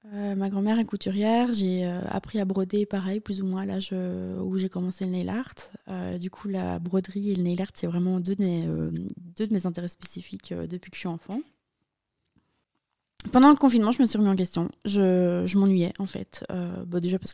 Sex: female